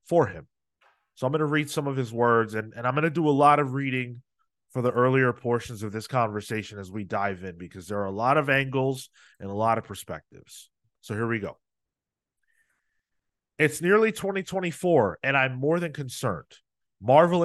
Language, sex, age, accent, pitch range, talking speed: English, male, 30-49, American, 125-170 Hz, 195 wpm